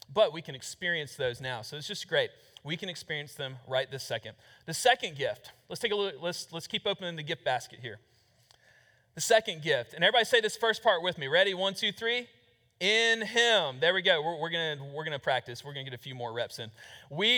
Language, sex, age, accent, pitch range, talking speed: English, male, 40-59, American, 155-215 Hz, 235 wpm